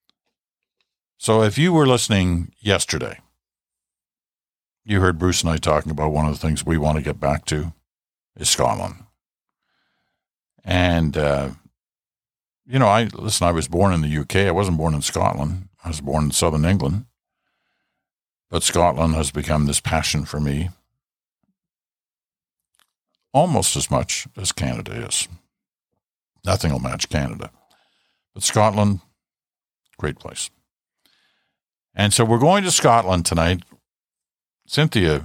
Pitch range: 80-110 Hz